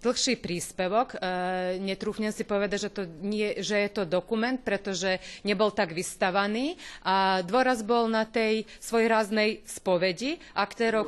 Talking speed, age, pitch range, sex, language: 135 wpm, 30-49, 195-235 Hz, female, Slovak